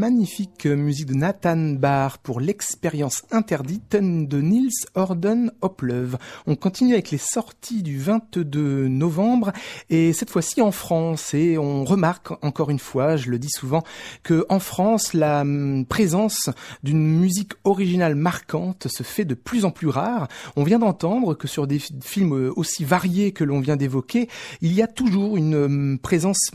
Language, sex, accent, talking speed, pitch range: French, male, French, 155 wpm, 150-215 Hz